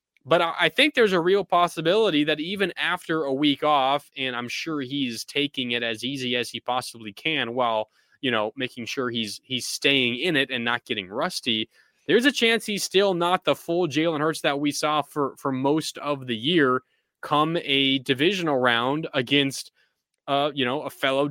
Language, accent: English, American